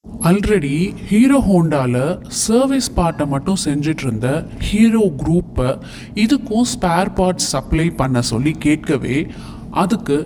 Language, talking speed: Tamil, 100 wpm